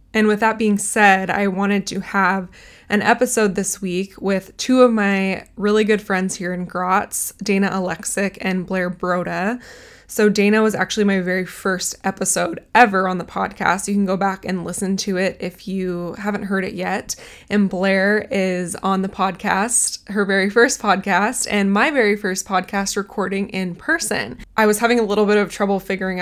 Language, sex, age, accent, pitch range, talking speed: English, female, 20-39, American, 190-210 Hz, 185 wpm